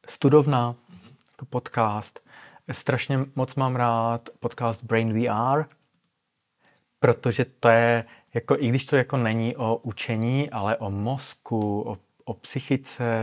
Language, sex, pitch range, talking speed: Czech, male, 105-130 Hz, 125 wpm